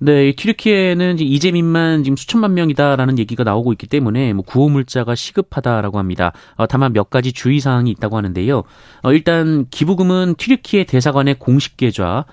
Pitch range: 110-155 Hz